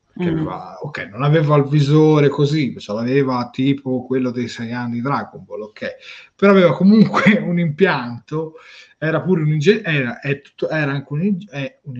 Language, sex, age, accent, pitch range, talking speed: Italian, male, 30-49, native, 120-160 Hz, 170 wpm